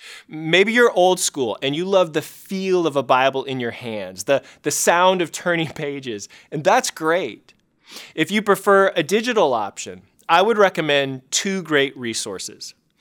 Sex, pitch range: male, 140-190 Hz